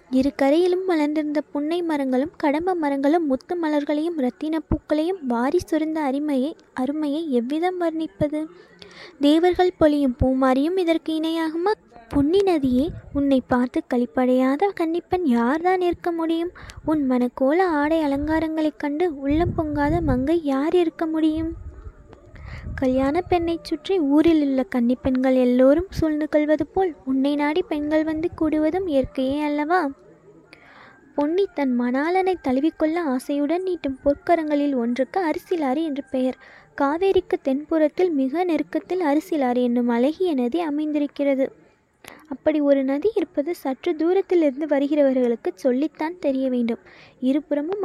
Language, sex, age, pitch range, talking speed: Tamil, female, 20-39, 270-330 Hz, 115 wpm